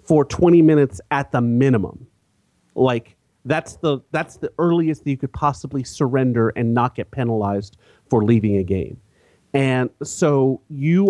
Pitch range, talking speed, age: 115-160 Hz, 150 wpm, 40-59